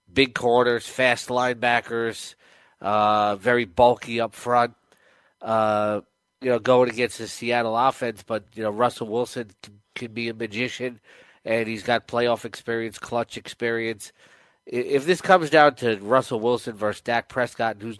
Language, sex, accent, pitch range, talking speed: English, male, American, 115-125 Hz, 150 wpm